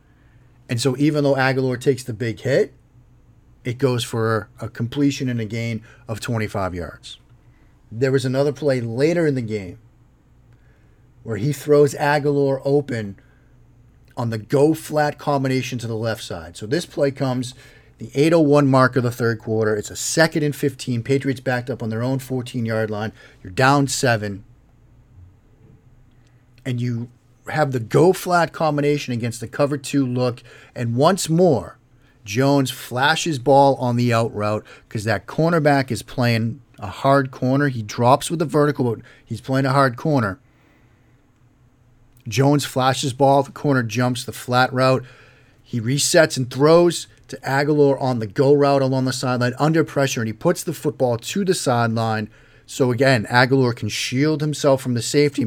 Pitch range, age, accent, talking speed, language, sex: 115-140 Hz, 40-59, American, 160 wpm, English, male